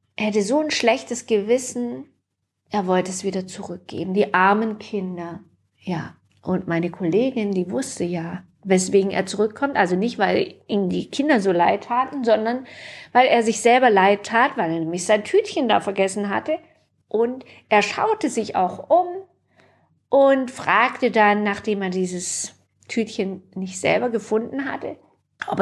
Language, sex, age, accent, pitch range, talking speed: German, female, 50-69, German, 180-240 Hz, 155 wpm